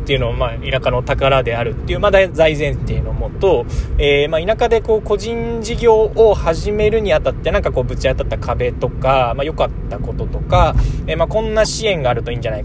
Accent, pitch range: native, 110-155 Hz